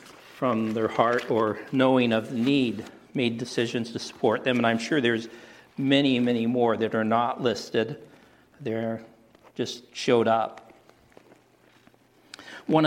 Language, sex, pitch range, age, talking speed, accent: English, male, 110-130 Hz, 60-79, 135 wpm, American